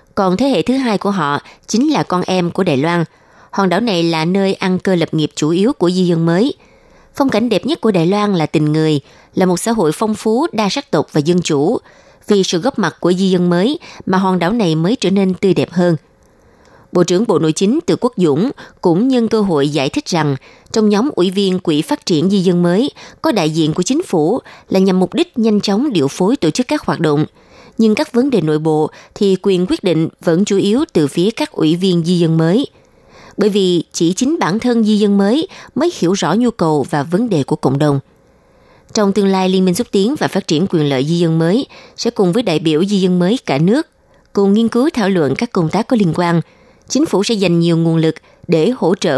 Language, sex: Vietnamese, female